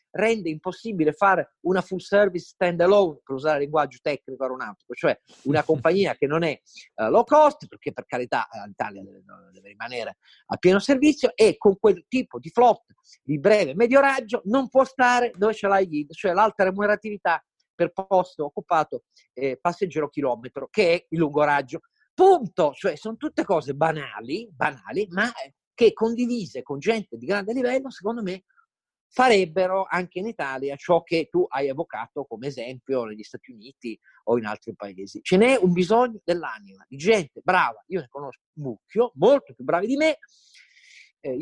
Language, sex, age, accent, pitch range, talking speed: Italian, male, 40-59, native, 155-230 Hz, 165 wpm